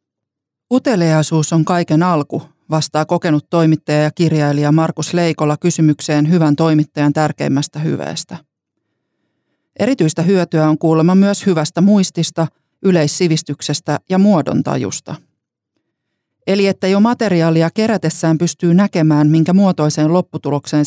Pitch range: 155-175 Hz